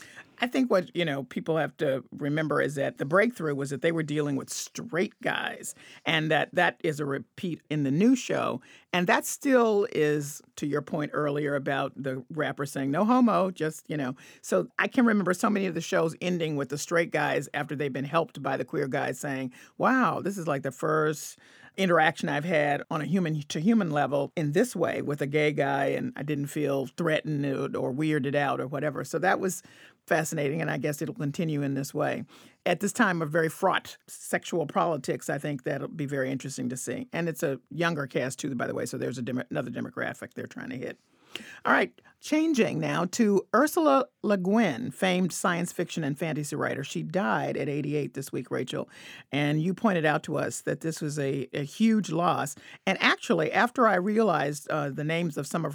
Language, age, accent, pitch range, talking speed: English, 40-59, American, 140-175 Hz, 210 wpm